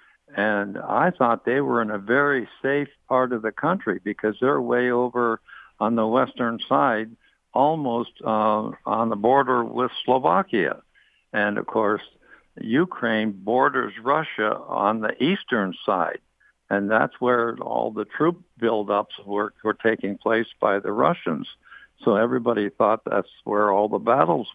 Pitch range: 105-125 Hz